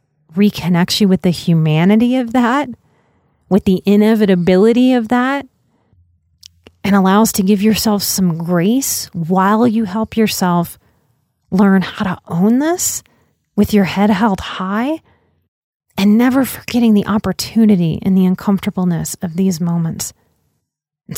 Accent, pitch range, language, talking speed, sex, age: American, 175-225 Hz, English, 130 wpm, female, 30-49